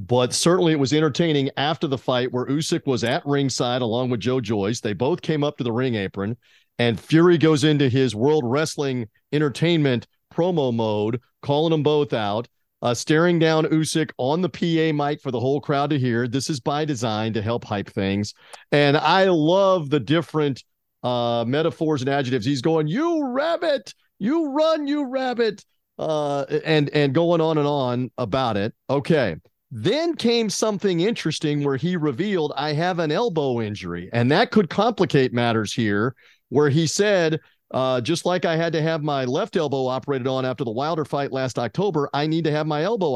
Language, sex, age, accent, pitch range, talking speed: English, male, 40-59, American, 125-165 Hz, 185 wpm